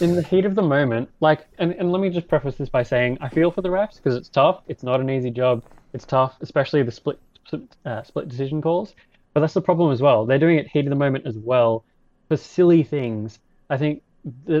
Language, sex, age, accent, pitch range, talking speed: English, male, 20-39, Australian, 125-160 Hz, 240 wpm